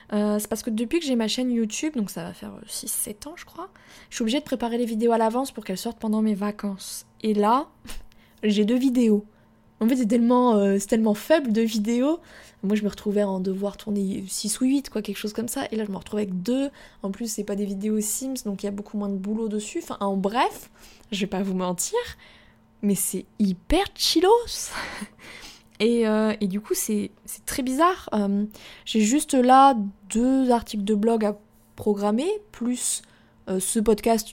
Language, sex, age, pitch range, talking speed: French, female, 20-39, 205-250 Hz, 210 wpm